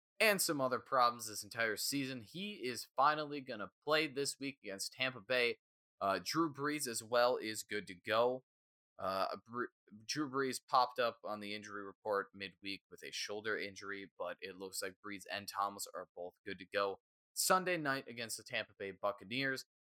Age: 20-39